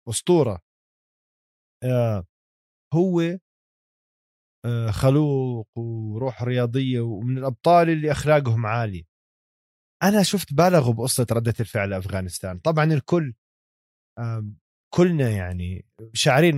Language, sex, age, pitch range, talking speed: Arabic, male, 20-39, 105-150 Hz, 80 wpm